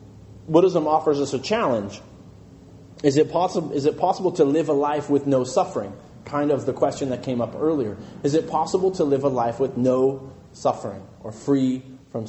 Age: 30-49